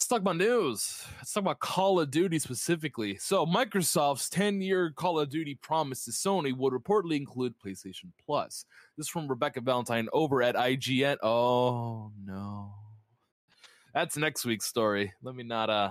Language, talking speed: English, 160 wpm